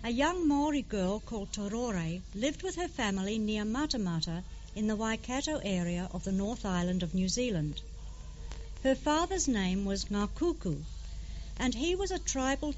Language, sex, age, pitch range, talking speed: English, female, 60-79, 165-265 Hz, 155 wpm